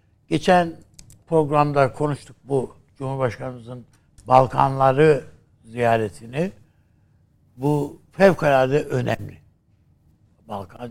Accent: native